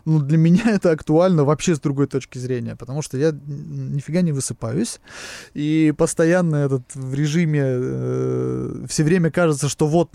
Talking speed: 160 wpm